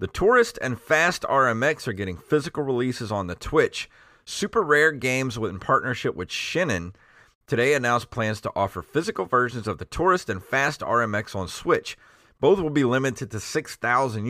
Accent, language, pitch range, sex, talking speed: American, English, 100-130 Hz, male, 170 wpm